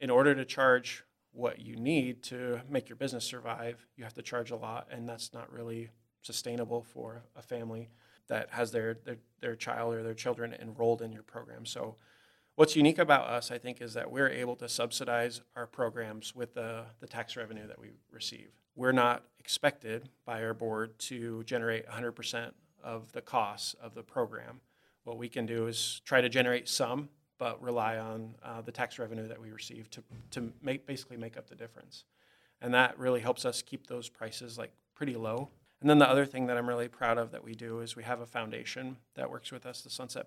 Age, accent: 30-49, American